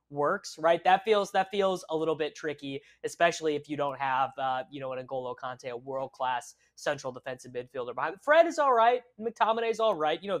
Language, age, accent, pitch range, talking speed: English, 20-39, American, 135-175 Hz, 215 wpm